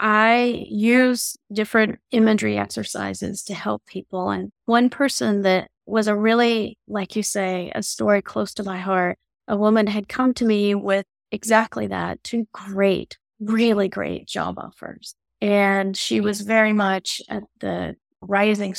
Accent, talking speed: American, 150 wpm